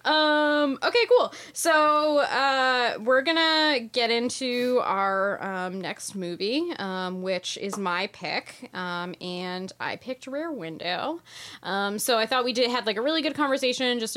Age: 10-29